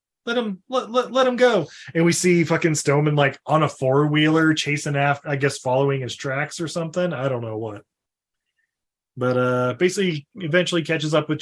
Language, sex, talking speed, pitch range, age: English, male, 190 wpm, 150-245 Hz, 20-39